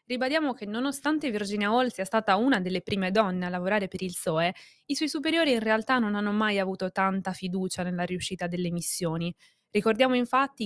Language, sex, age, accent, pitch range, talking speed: Italian, female, 20-39, native, 185-235 Hz, 185 wpm